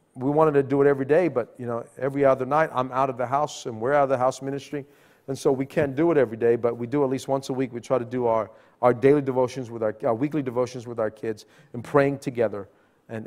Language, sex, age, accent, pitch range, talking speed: English, male, 40-59, American, 110-145 Hz, 275 wpm